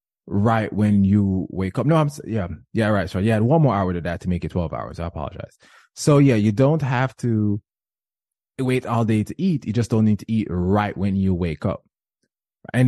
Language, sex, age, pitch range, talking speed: English, male, 20-39, 100-130 Hz, 225 wpm